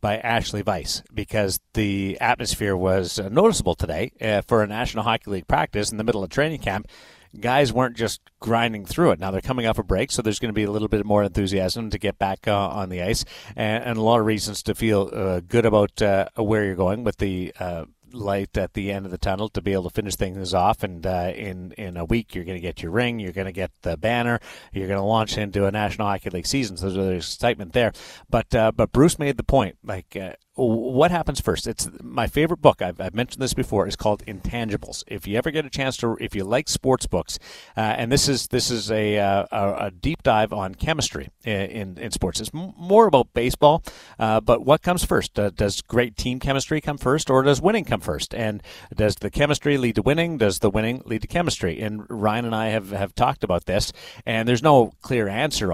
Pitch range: 100-120 Hz